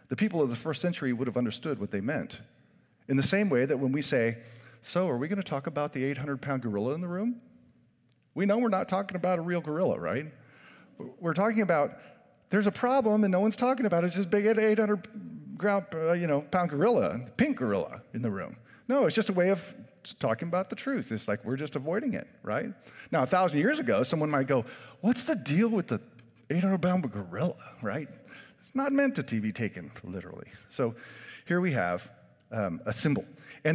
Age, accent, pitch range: 40-59, American, 125-205 Hz